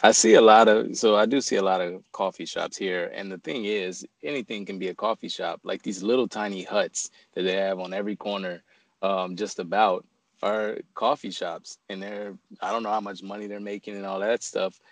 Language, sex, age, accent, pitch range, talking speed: English, male, 20-39, American, 100-115 Hz, 225 wpm